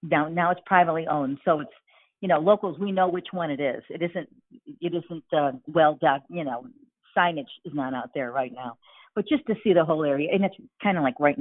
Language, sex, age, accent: English, female, 50-69, American